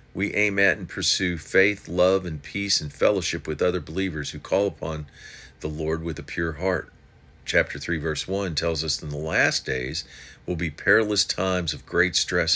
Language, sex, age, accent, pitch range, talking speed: English, male, 50-69, American, 75-95 Hz, 195 wpm